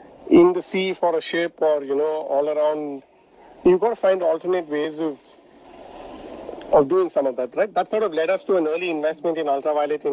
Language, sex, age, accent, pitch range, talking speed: English, male, 40-59, Indian, 150-210 Hz, 215 wpm